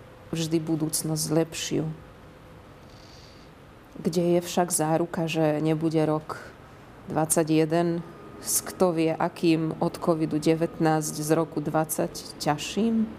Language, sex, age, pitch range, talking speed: Slovak, female, 30-49, 155-180 Hz, 95 wpm